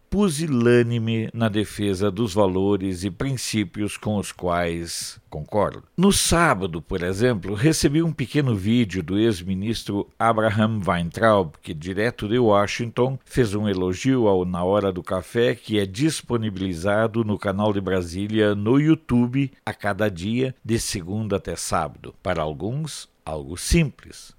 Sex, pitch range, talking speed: male, 100-120 Hz, 135 wpm